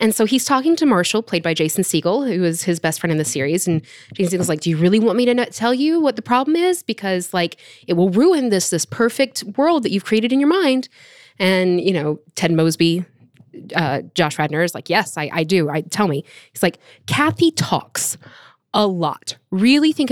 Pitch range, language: 175-260 Hz, English